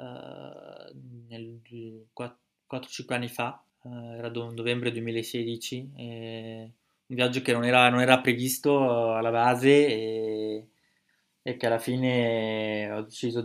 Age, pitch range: 20-39, 110-120 Hz